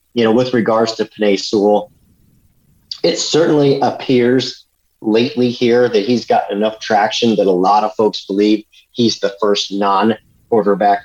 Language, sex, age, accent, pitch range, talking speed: English, male, 40-59, American, 95-120 Hz, 145 wpm